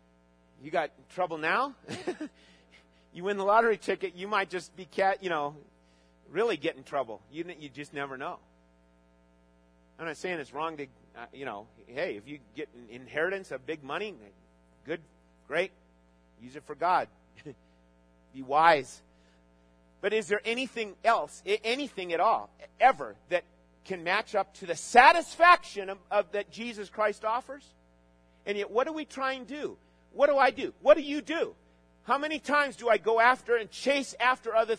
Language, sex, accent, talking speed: English, male, American, 170 wpm